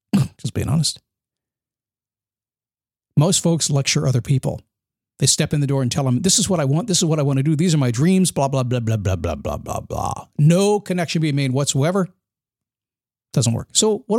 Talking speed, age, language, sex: 205 wpm, 50-69, English, male